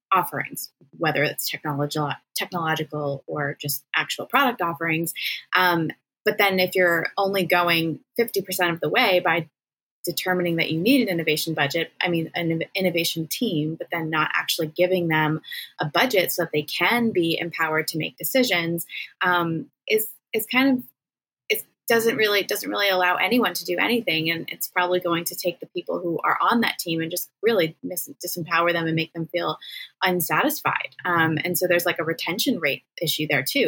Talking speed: 175 wpm